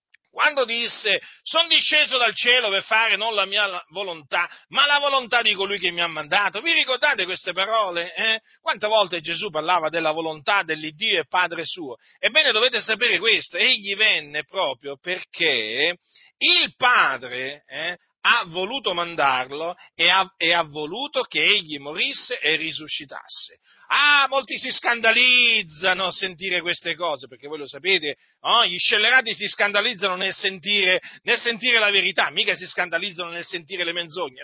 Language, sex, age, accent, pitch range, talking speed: Italian, male, 40-59, native, 175-235 Hz, 150 wpm